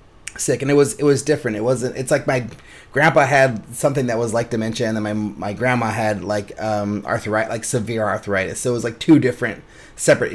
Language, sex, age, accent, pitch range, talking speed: English, male, 30-49, American, 110-150 Hz, 220 wpm